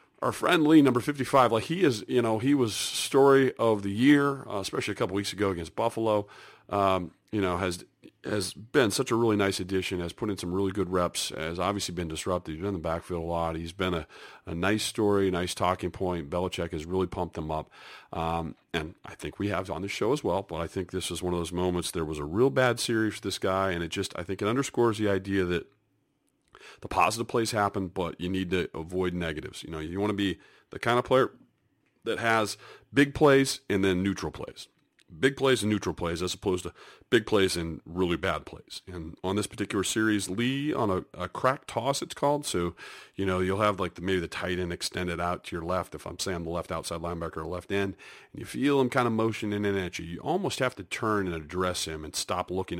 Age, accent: 40-59, American